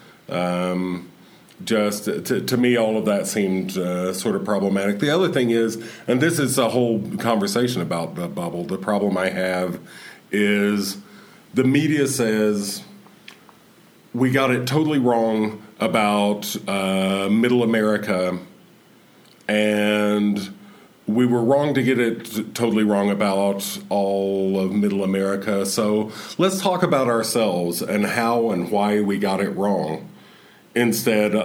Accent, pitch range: American, 95-120 Hz